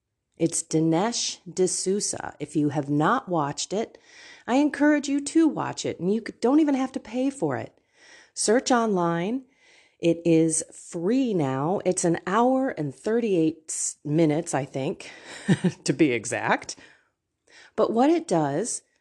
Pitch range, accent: 155-220 Hz, American